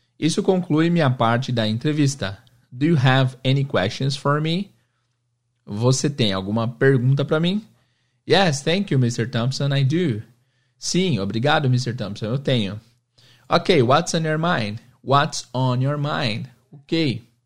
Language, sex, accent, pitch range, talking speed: Portuguese, male, Brazilian, 120-150 Hz, 145 wpm